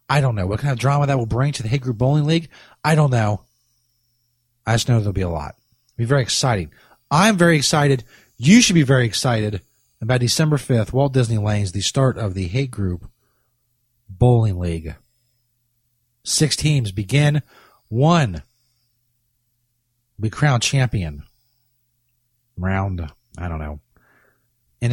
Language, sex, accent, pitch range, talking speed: English, male, American, 115-135 Hz, 165 wpm